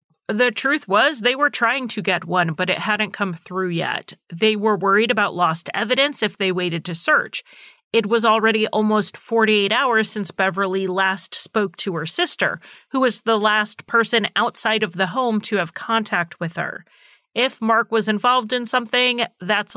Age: 30-49